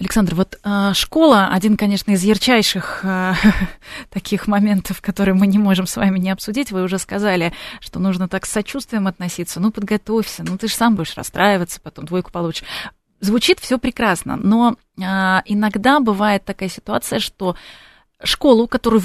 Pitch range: 185-220 Hz